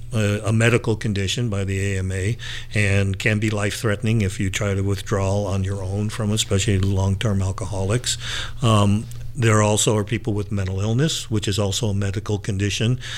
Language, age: English, 50-69